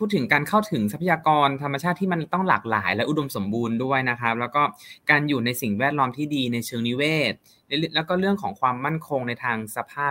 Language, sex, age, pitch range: Thai, male, 20-39, 110-145 Hz